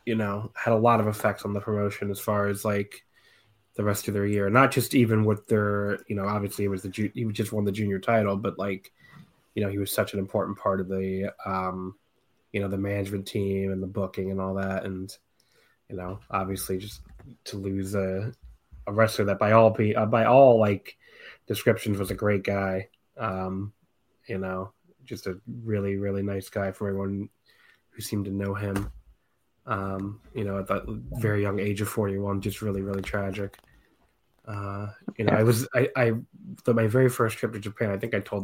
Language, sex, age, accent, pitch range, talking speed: English, male, 20-39, American, 100-110 Hz, 200 wpm